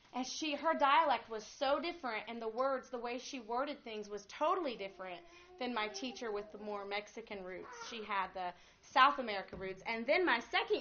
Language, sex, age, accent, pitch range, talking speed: English, female, 30-49, American, 210-275 Hz, 200 wpm